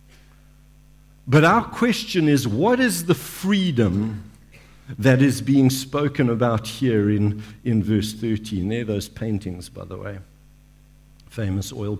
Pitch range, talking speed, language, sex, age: 110-155 Hz, 130 wpm, English, male, 50-69